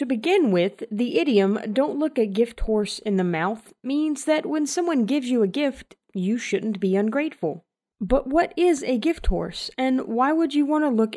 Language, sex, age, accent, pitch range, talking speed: English, female, 30-49, American, 200-275 Hz, 205 wpm